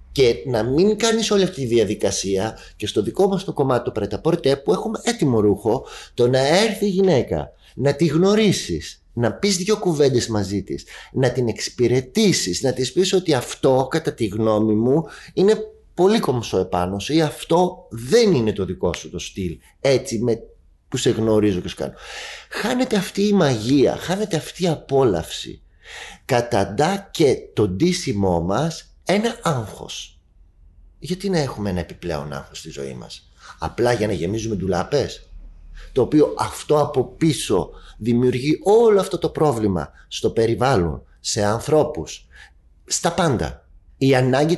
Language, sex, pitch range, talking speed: Greek, male, 100-165 Hz, 155 wpm